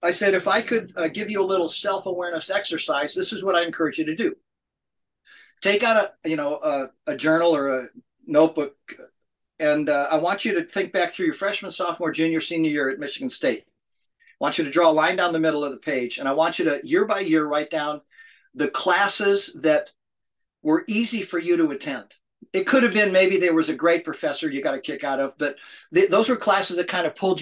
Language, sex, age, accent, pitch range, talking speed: English, male, 50-69, American, 155-205 Hz, 230 wpm